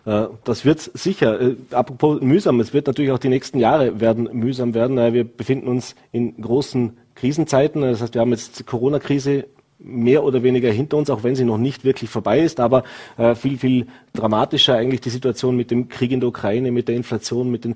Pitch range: 115-130 Hz